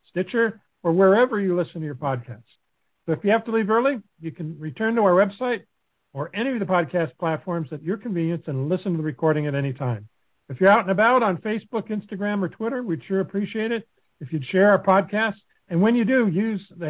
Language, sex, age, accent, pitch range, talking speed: English, male, 60-79, American, 155-205 Hz, 225 wpm